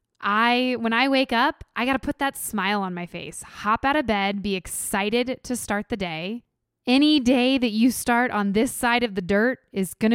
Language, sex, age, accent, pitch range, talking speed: English, female, 20-39, American, 190-240 Hz, 220 wpm